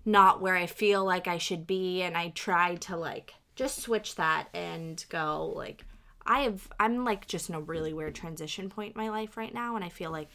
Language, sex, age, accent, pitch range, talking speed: English, female, 20-39, American, 155-195 Hz, 225 wpm